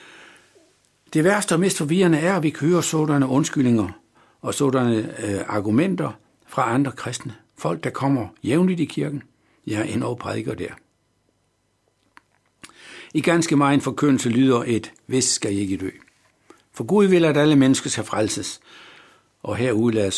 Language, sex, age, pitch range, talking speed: Danish, male, 60-79, 110-155 Hz, 155 wpm